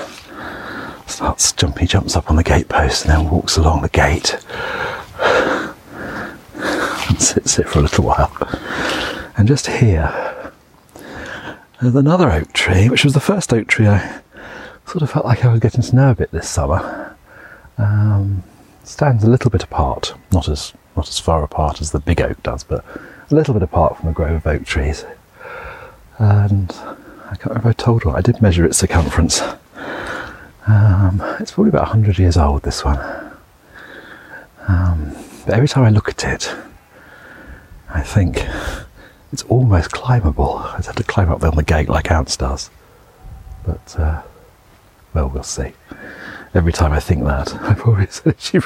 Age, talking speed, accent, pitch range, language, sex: 40-59, 170 wpm, British, 80-110 Hz, English, male